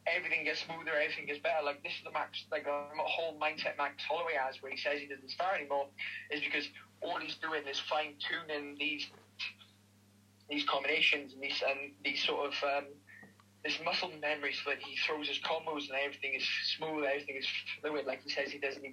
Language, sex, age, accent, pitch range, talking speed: English, male, 20-39, British, 140-155 Hz, 205 wpm